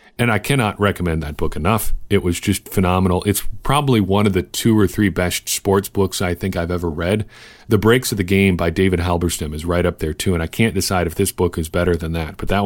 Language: English